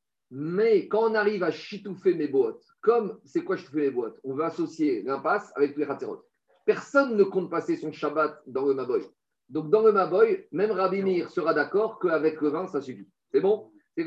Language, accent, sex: French, French, male